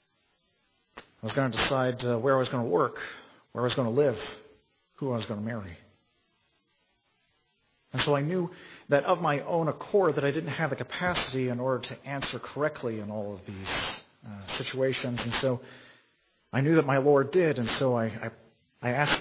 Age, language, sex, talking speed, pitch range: 40-59, English, male, 195 wpm, 120-150 Hz